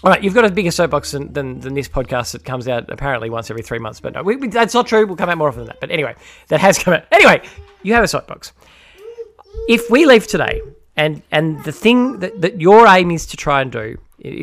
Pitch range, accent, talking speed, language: 150-220 Hz, Australian, 260 wpm, English